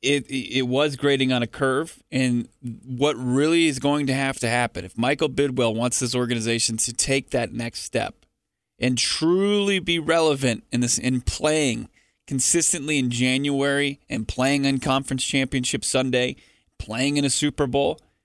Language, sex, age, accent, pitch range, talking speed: English, male, 20-39, American, 115-145 Hz, 160 wpm